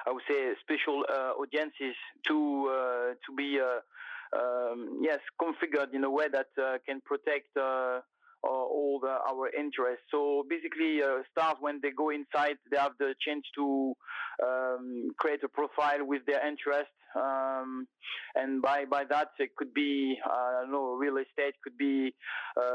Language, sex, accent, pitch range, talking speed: English, male, French, 130-145 Hz, 165 wpm